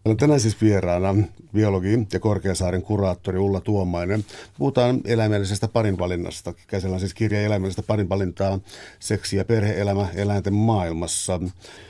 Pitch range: 95-110 Hz